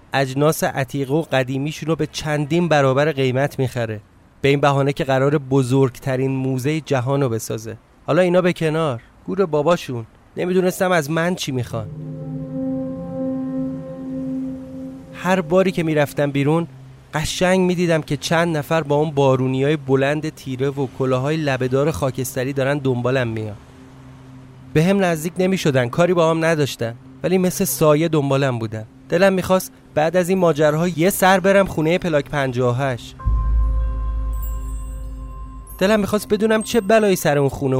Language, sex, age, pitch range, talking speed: Persian, male, 30-49, 130-170 Hz, 135 wpm